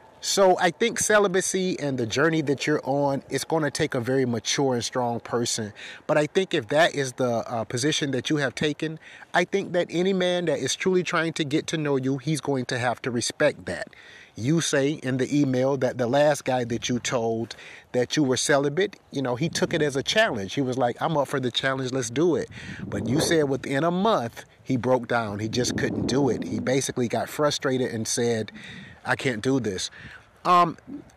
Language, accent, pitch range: English, American, 125-155 Hz